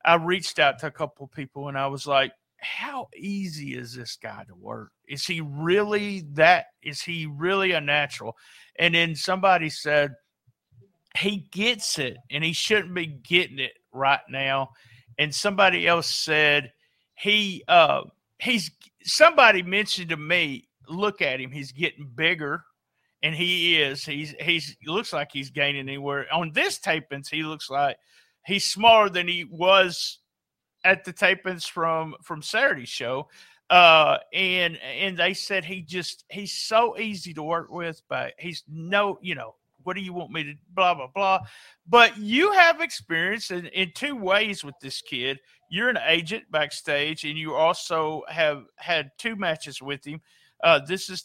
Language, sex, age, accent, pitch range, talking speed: English, male, 50-69, American, 145-190 Hz, 170 wpm